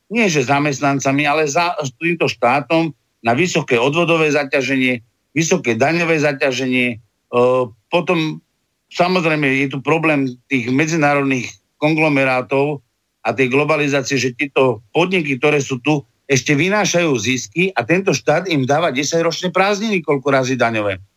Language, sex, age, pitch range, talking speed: Slovak, male, 50-69, 130-170 Hz, 135 wpm